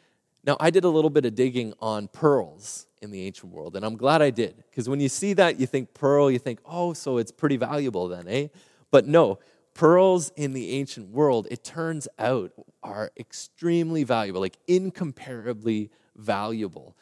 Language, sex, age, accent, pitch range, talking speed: English, male, 30-49, American, 100-135 Hz, 190 wpm